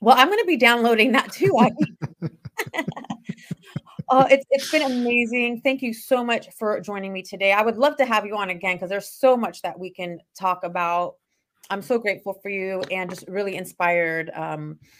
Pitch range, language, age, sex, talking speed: 175-225 Hz, English, 30-49, female, 195 wpm